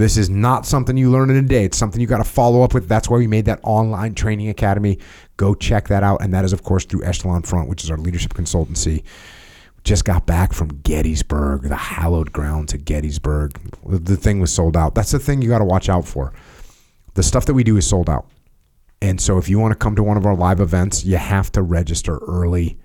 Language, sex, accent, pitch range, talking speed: English, male, American, 80-105 Hz, 240 wpm